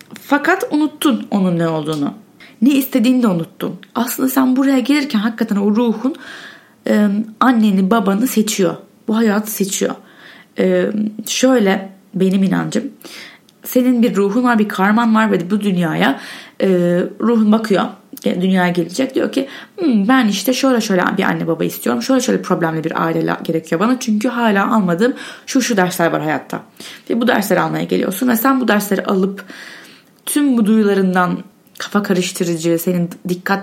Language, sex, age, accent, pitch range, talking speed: Turkish, female, 30-49, native, 190-250 Hz, 150 wpm